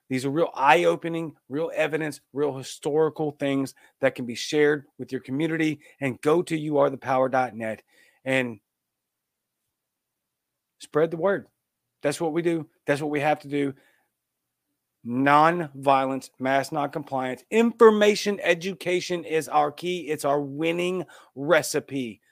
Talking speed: 125 wpm